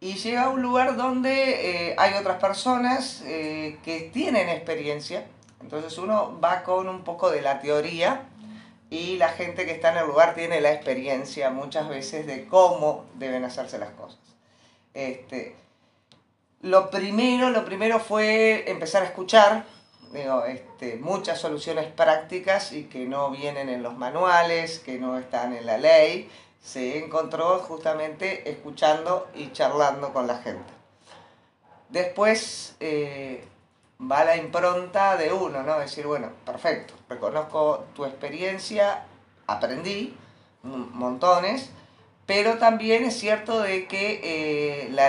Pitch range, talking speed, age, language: 140-195 Hz, 135 wpm, 40-59, Spanish